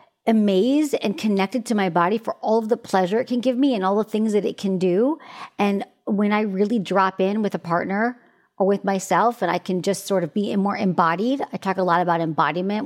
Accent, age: American, 40-59